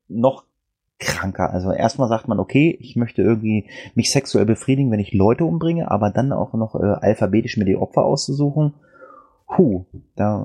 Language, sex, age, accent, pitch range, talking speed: German, male, 30-49, German, 105-130 Hz, 165 wpm